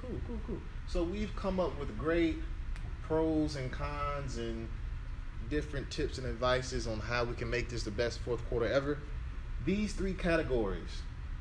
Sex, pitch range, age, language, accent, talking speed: male, 105-130 Hz, 30-49, English, American, 165 wpm